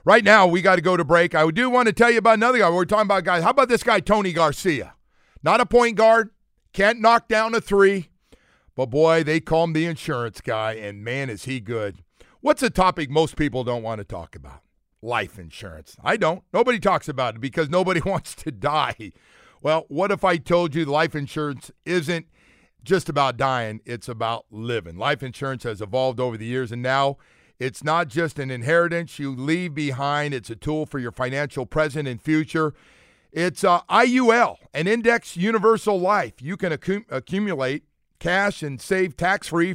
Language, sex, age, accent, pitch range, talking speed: English, male, 50-69, American, 130-185 Hz, 195 wpm